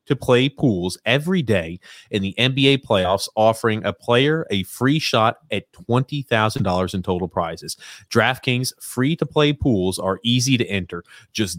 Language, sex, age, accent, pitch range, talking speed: English, male, 30-49, American, 100-130 Hz, 155 wpm